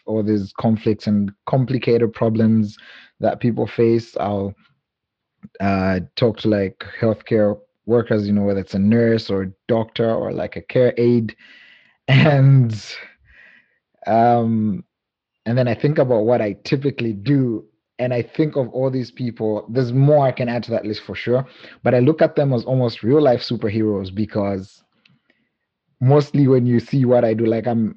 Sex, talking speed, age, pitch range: male, 165 wpm, 30-49, 105-130 Hz